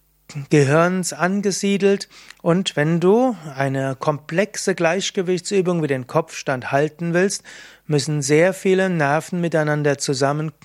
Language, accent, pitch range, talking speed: German, German, 145-190 Hz, 105 wpm